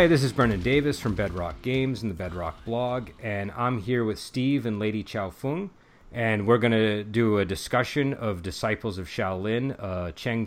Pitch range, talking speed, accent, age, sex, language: 95-120 Hz, 195 wpm, American, 30-49, male, English